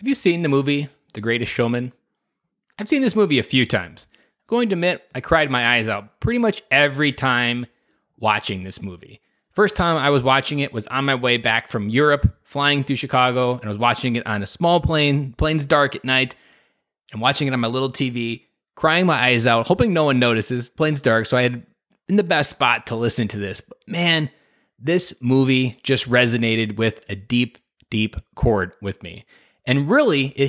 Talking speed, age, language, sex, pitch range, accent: 205 wpm, 20-39, English, male, 120-155 Hz, American